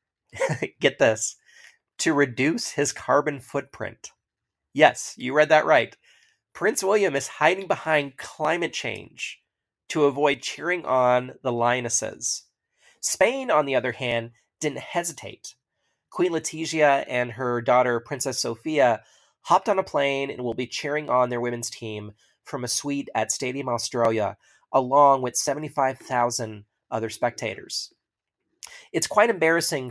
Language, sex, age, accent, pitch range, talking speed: English, male, 30-49, American, 115-145 Hz, 130 wpm